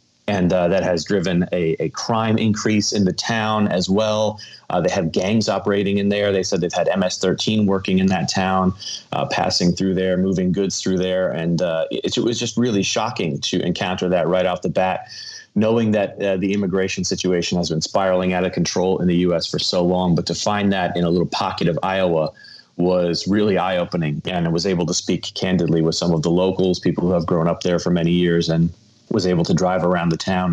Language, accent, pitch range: English, American, 90-100 Hz